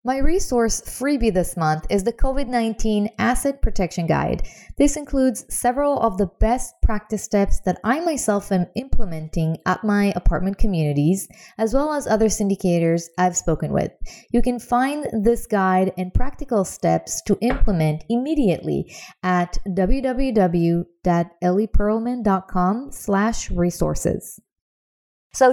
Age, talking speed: 20-39, 120 wpm